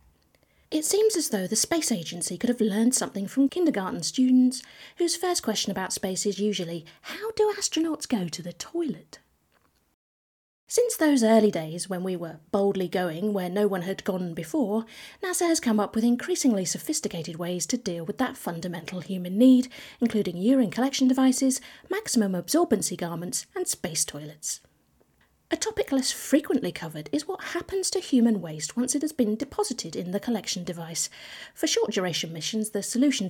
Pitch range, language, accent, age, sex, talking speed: 185-275 Hz, English, British, 40-59, female, 170 wpm